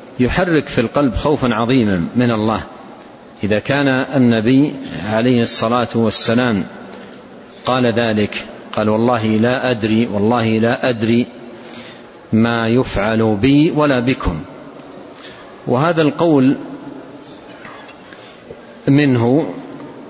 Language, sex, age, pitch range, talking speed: Arabic, male, 50-69, 110-130 Hz, 90 wpm